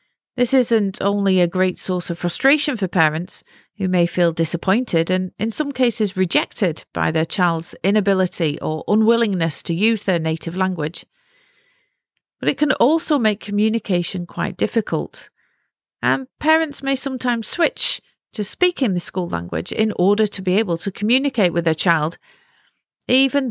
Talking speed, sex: 150 wpm, female